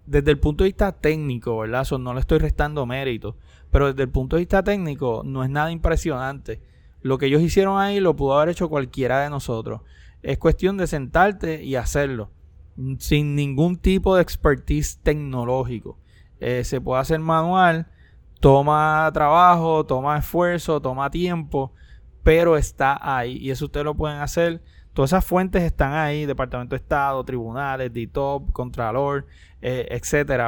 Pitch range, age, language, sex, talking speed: 130-160 Hz, 20-39, Spanish, male, 160 wpm